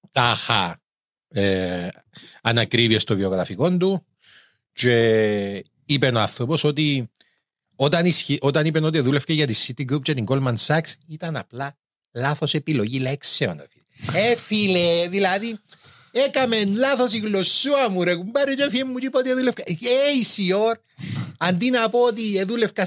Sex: male